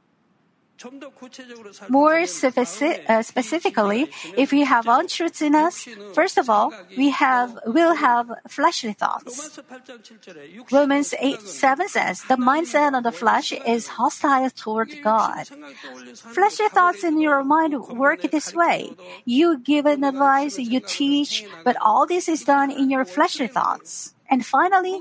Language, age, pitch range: Korean, 50-69, 240-300 Hz